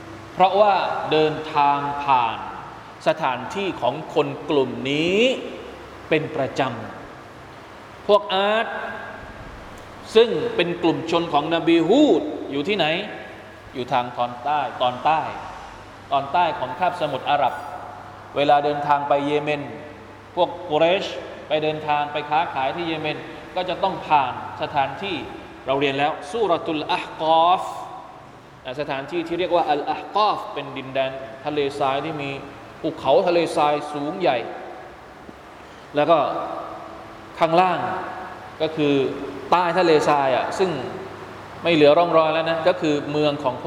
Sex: male